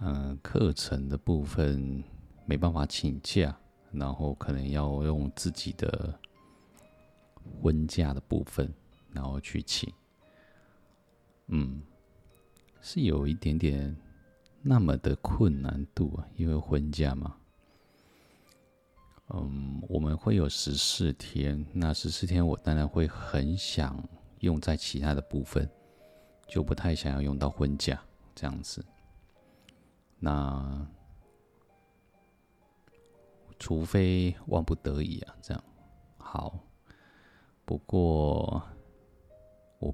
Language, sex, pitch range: Chinese, male, 70-90 Hz